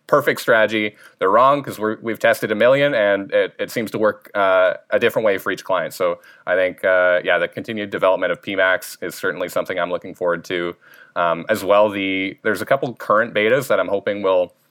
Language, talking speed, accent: English, 210 wpm, American